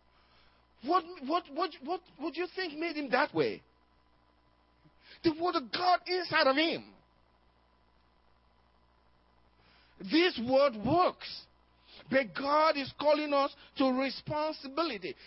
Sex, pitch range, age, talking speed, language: male, 255-335 Hz, 50-69, 115 wpm, English